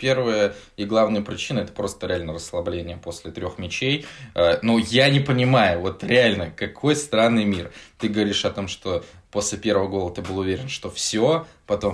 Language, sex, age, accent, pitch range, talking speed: Russian, male, 20-39, native, 90-115 Hz, 175 wpm